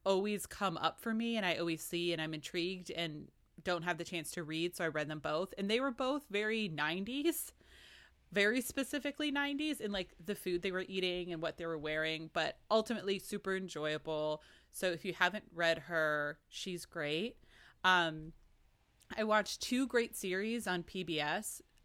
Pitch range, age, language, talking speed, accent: 160-205 Hz, 20-39, English, 180 wpm, American